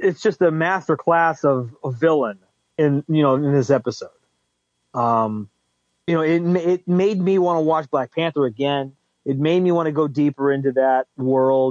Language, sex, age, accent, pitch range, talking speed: English, male, 30-49, American, 135-170 Hz, 185 wpm